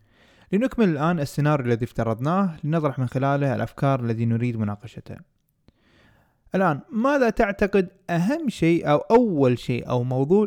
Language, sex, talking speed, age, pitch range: Arabic, male, 125 wpm, 20-39, 125-175 Hz